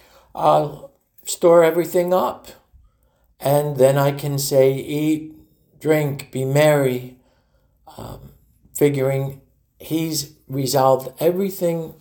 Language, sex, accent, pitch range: English, male, American, 125-150 Hz